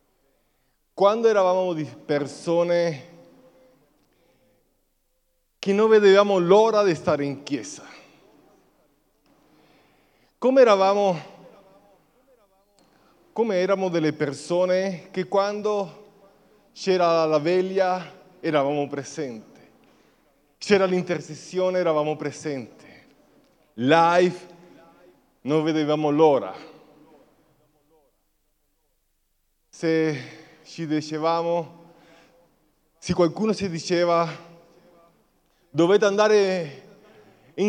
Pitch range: 160-195 Hz